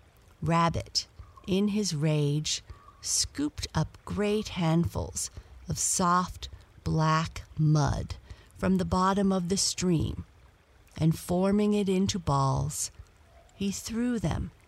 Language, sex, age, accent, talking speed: English, female, 50-69, American, 105 wpm